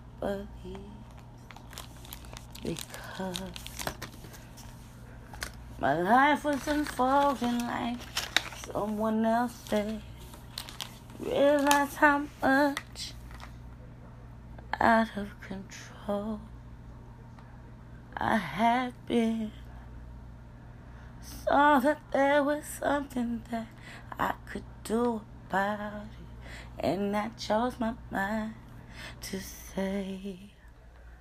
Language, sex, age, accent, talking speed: English, female, 20-39, American, 70 wpm